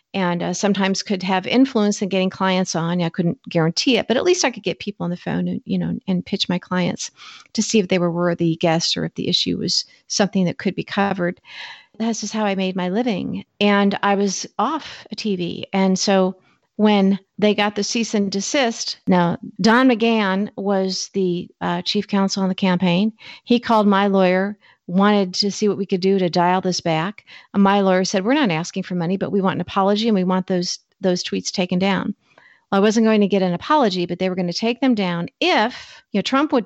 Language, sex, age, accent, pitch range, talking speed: English, female, 50-69, American, 180-210 Hz, 225 wpm